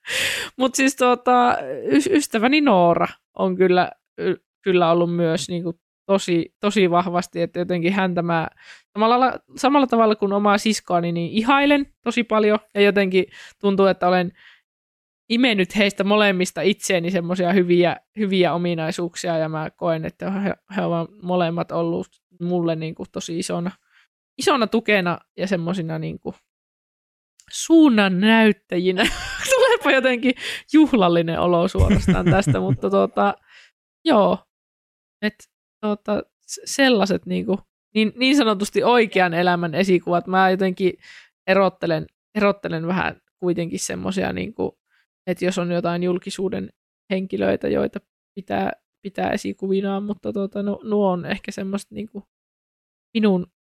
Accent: native